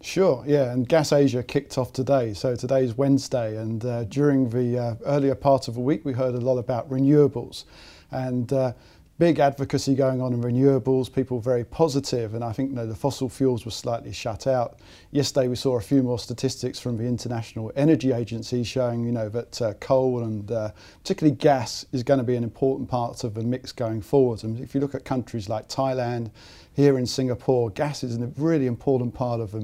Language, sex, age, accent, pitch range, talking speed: English, male, 40-59, British, 115-135 Hz, 210 wpm